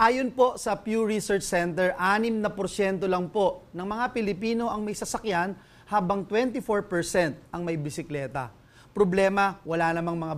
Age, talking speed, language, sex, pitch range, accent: 30-49, 150 wpm, English, male, 160-210 Hz, Filipino